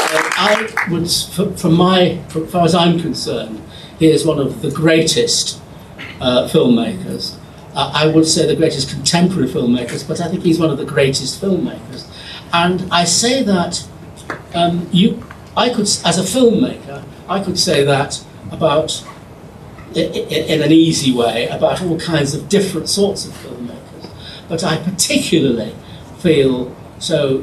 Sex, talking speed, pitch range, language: male, 145 wpm, 140-170 Hz, Persian